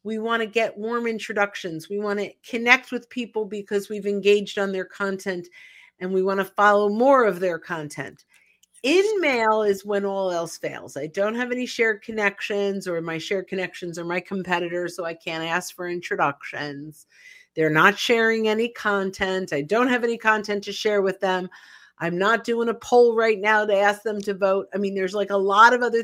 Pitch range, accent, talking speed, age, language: 190-240 Hz, American, 200 wpm, 50-69, English